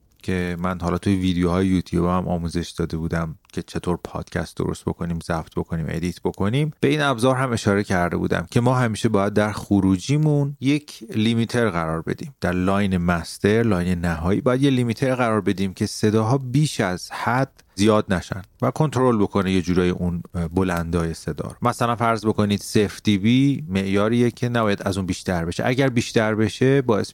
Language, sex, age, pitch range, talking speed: Persian, male, 30-49, 90-120 Hz, 170 wpm